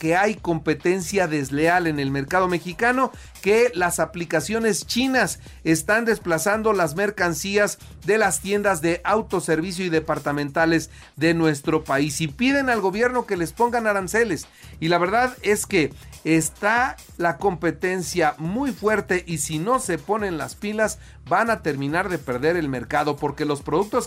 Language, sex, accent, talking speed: Spanish, male, Mexican, 150 wpm